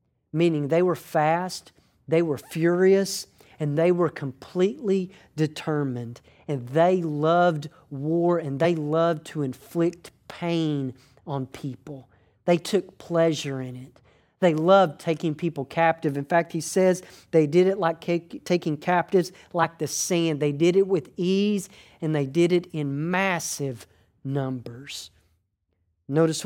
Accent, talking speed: American, 135 wpm